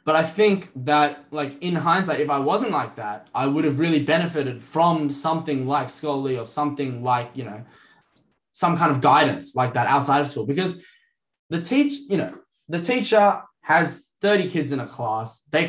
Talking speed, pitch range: 185 wpm, 140-185 Hz